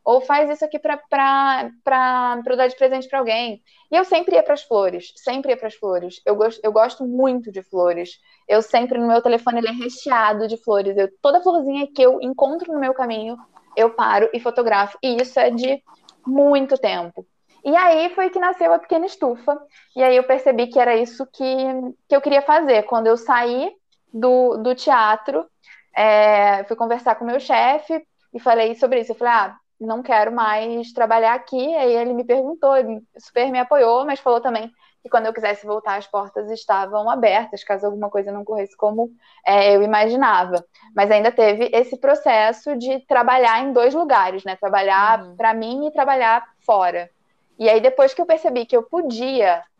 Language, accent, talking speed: Portuguese, Brazilian, 190 wpm